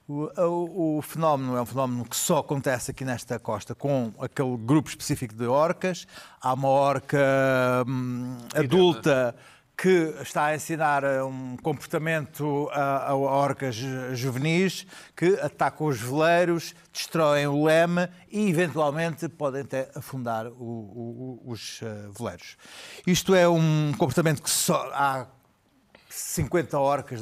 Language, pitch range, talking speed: Portuguese, 130-160 Hz, 115 wpm